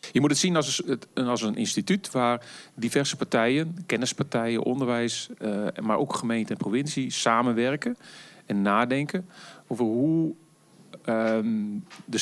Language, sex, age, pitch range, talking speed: Dutch, male, 40-59, 115-160 Hz, 115 wpm